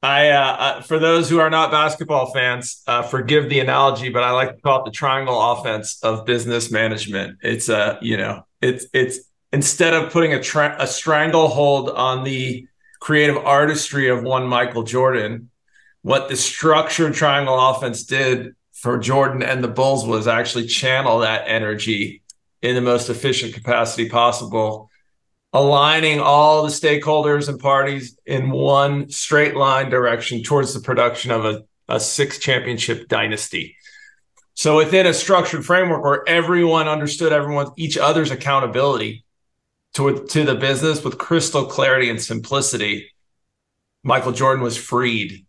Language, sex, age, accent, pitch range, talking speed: English, male, 40-59, American, 120-150 Hz, 150 wpm